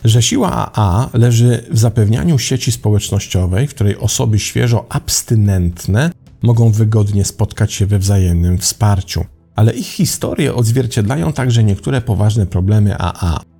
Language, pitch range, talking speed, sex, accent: Polish, 95-115 Hz, 130 wpm, male, native